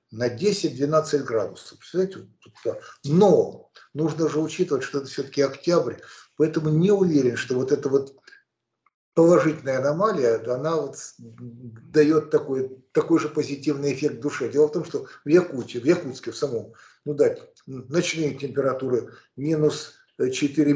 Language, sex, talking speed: Russian, male, 135 wpm